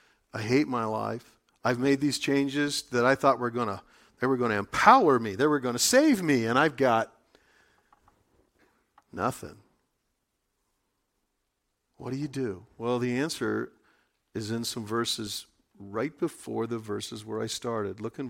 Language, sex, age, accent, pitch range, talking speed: English, male, 50-69, American, 110-130 Hz, 165 wpm